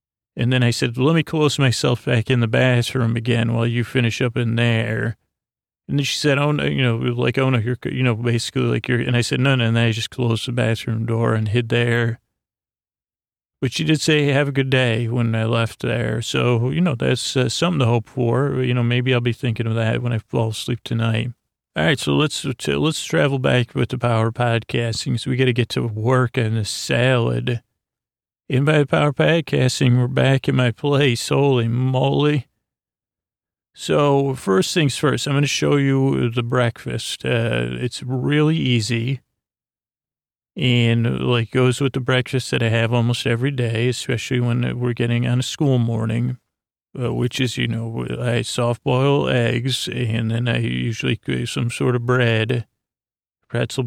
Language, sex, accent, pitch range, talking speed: English, male, American, 115-130 Hz, 190 wpm